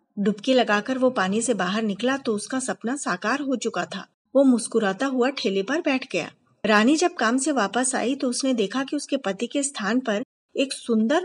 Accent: native